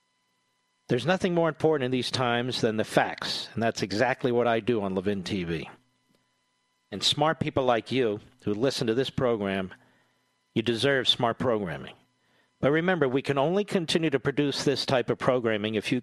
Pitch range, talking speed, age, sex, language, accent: 105-140 Hz, 175 wpm, 50-69, male, English, American